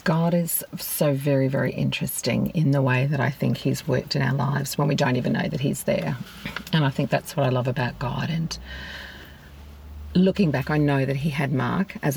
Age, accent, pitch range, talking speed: 40-59, Australian, 140-185 Hz, 215 wpm